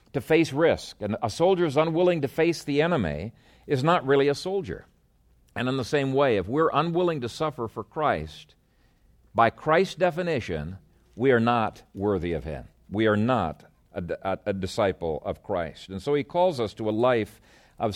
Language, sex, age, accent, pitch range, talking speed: English, male, 50-69, American, 110-150 Hz, 185 wpm